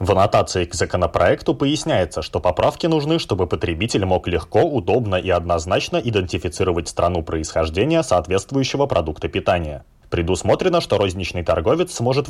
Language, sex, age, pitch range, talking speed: Russian, male, 20-39, 85-130 Hz, 125 wpm